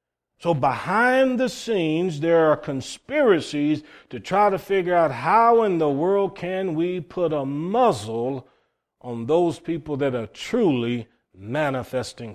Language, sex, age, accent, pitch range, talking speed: English, male, 40-59, American, 130-165 Hz, 135 wpm